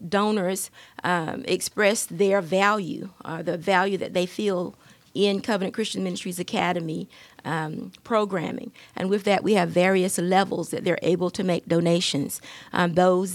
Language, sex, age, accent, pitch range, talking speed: English, female, 40-59, American, 170-195 Hz, 150 wpm